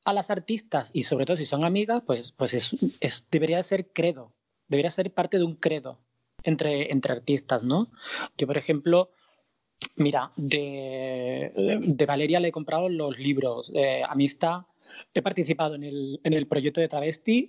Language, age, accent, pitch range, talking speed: Spanish, 20-39, Spanish, 140-175 Hz, 155 wpm